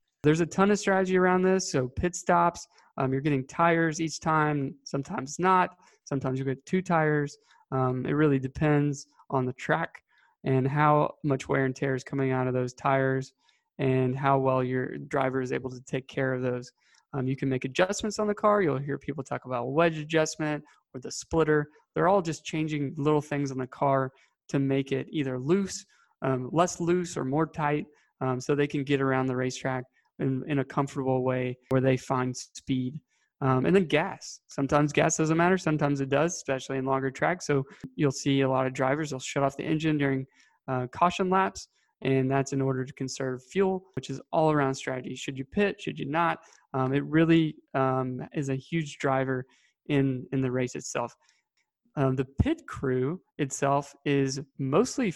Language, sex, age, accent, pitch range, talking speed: English, male, 20-39, American, 130-155 Hz, 195 wpm